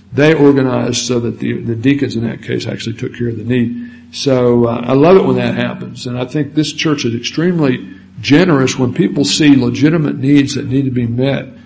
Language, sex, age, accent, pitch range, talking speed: English, male, 60-79, American, 115-135 Hz, 215 wpm